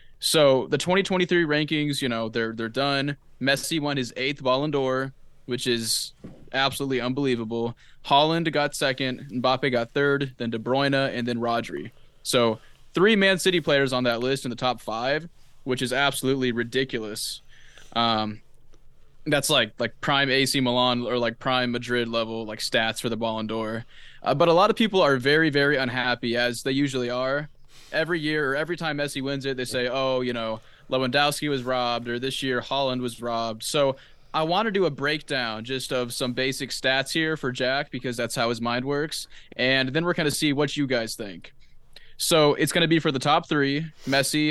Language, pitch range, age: English, 125-145 Hz, 20-39